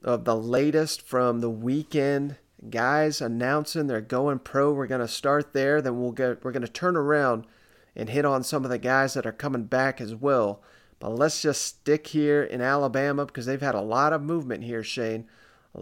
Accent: American